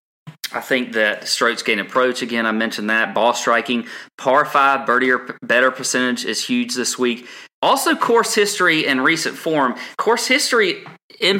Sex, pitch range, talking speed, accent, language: male, 115-145 Hz, 160 wpm, American, English